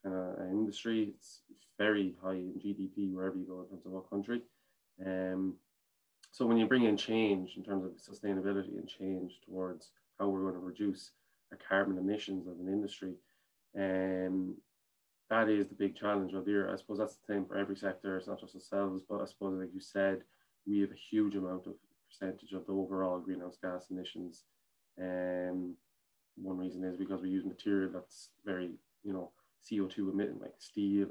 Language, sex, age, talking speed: English, male, 20-39, 190 wpm